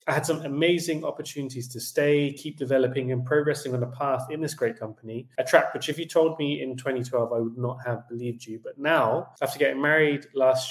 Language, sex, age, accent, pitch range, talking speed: English, male, 20-39, British, 120-140 Hz, 220 wpm